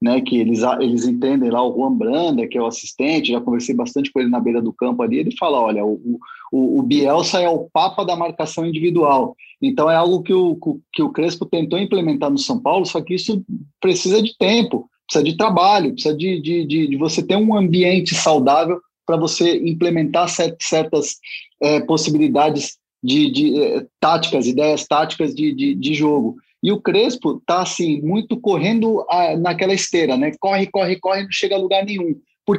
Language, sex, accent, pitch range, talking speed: Portuguese, male, Brazilian, 150-200 Hz, 190 wpm